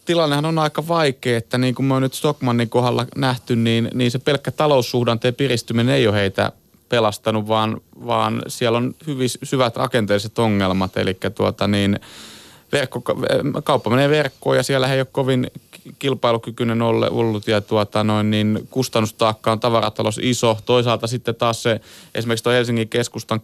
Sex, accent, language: male, native, Finnish